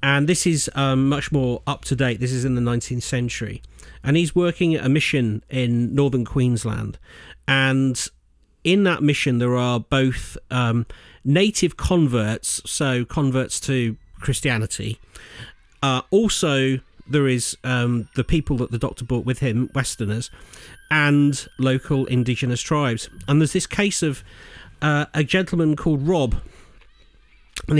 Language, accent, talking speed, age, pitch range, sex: English, British, 140 wpm, 40-59, 120-145 Hz, male